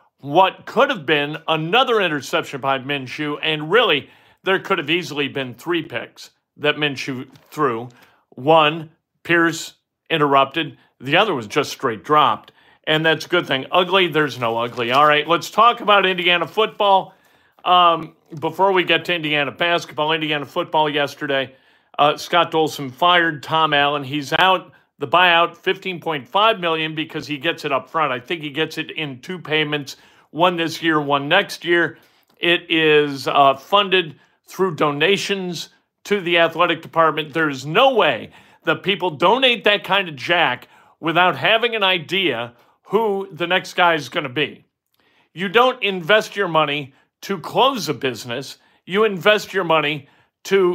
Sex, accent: male, American